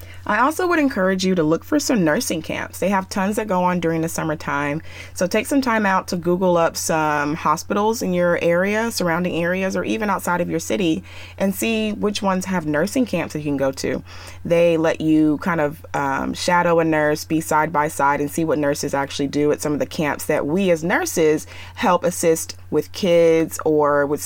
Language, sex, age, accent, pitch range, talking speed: English, female, 30-49, American, 150-195 Hz, 215 wpm